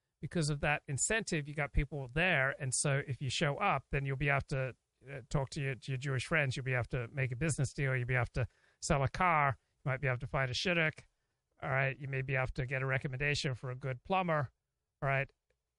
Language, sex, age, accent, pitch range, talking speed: English, male, 40-59, American, 130-155 Hz, 245 wpm